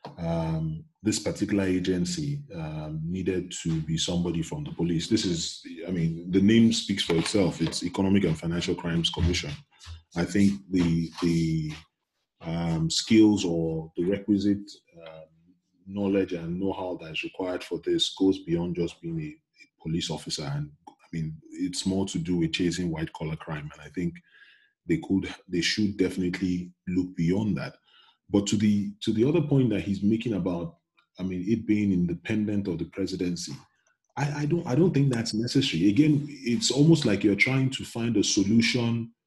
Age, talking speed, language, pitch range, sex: 20-39, 170 wpm, English, 90-120 Hz, male